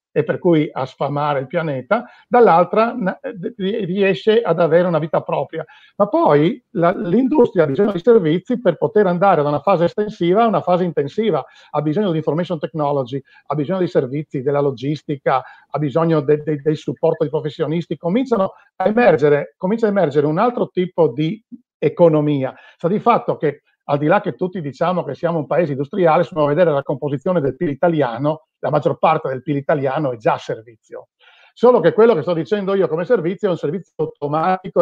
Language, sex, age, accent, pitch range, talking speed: Italian, male, 50-69, native, 150-195 Hz, 185 wpm